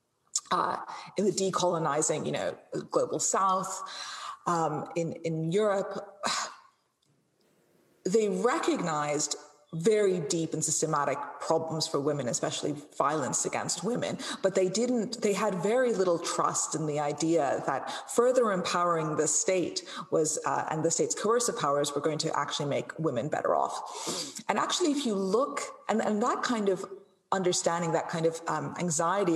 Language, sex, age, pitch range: English, female, 30-49, 155-210 Hz